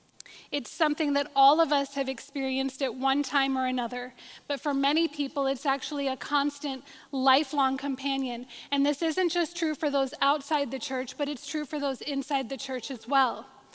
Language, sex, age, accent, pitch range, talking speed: English, female, 10-29, American, 265-295 Hz, 190 wpm